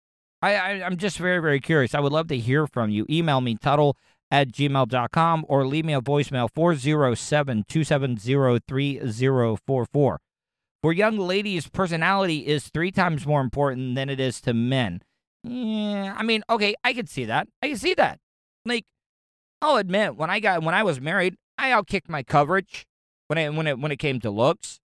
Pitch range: 130-180 Hz